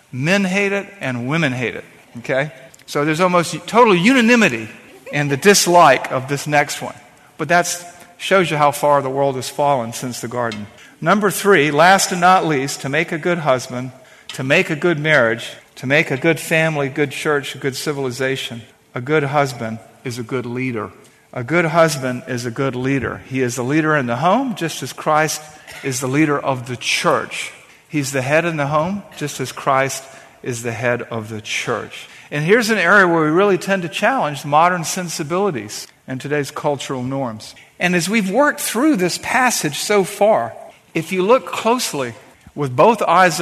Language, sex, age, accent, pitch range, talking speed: English, male, 50-69, American, 135-180 Hz, 185 wpm